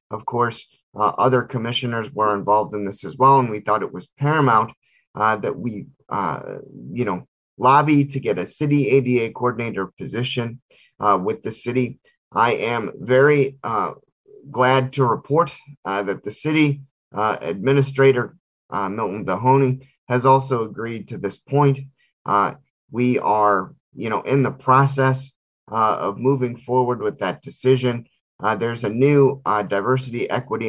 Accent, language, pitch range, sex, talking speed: American, English, 110-135 Hz, male, 155 wpm